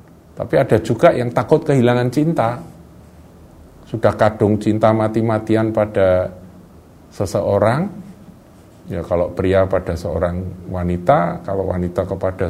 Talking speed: 105 wpm